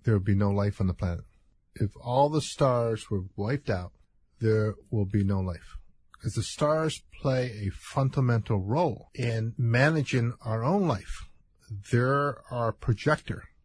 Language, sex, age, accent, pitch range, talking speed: English, male, 50-69, American, 105-135 Hz, 155 wpm